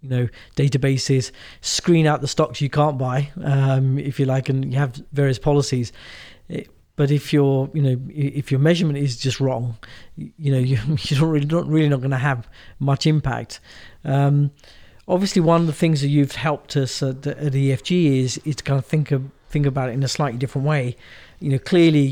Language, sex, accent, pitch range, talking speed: English, male, British, 130-150 Hz, 205 wpm